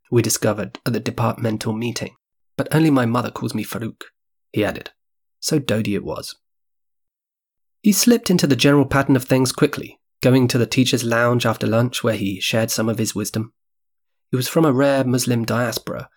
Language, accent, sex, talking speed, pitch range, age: English, British, male, 180 wpm, 110-135 Hz, 30-49